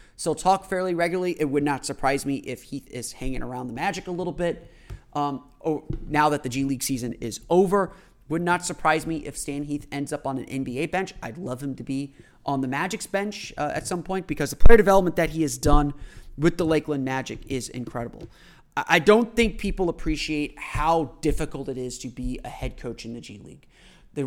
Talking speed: 215 wpm